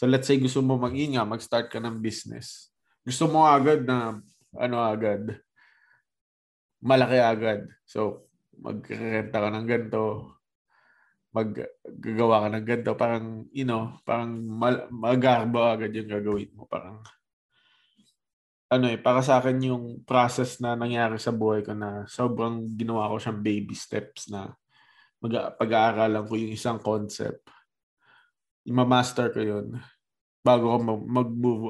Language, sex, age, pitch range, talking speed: Filipino, male, 20-39, 110-125 Hz, 130 wpm